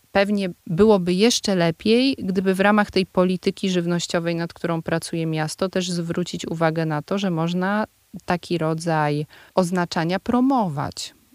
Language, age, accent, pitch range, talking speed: Polish, 30-49, native, 175-215 Hz, 130 wpm